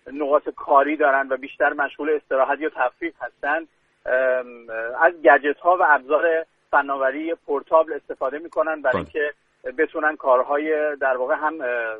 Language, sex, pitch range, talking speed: Persian, male, 145-180 Hz, 135 wpm